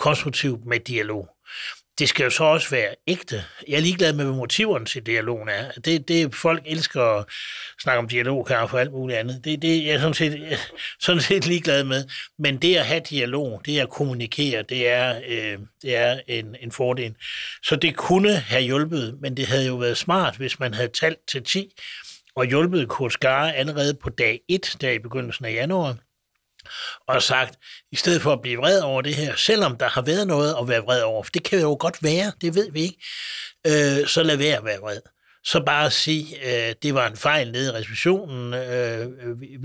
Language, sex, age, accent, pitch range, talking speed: Danish, male, 60-79, native, 120-155 Hz, 210 wpm